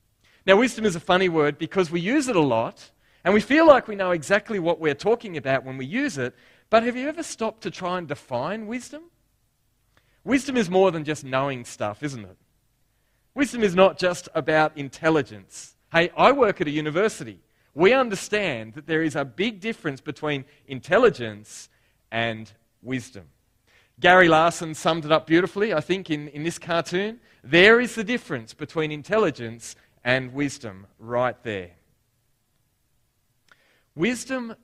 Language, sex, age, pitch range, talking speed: English, male, 30-49, 120-185 Hz, 165 wpm